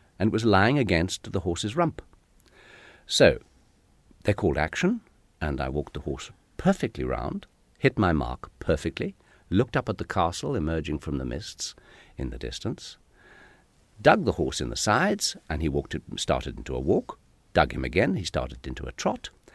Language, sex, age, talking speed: English, male, 50-69, 170 wpm